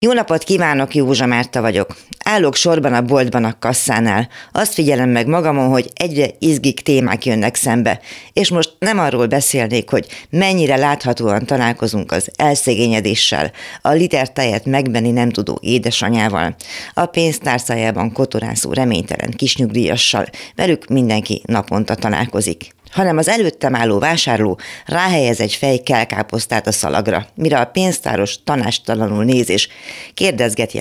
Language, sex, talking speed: Hungarian, female, 125 wpm